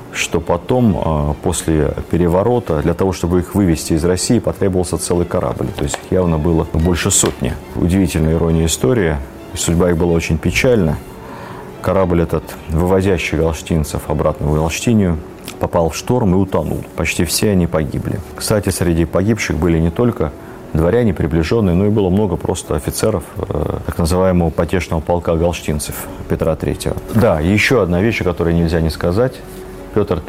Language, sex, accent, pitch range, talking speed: Russian, male, native, 80-95 Hz, 150 wpm